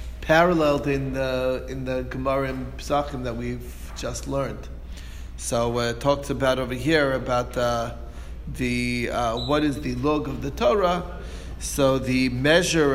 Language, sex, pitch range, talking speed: English, male, 120-150 Hz, 155 wpm